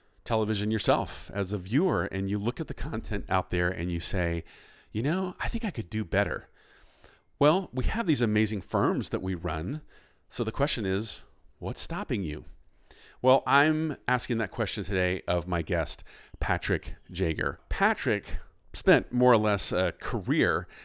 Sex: male